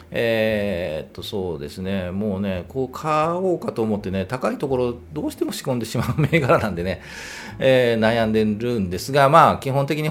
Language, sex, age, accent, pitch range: Japanese, male, 40-59, native, 95-155 Hz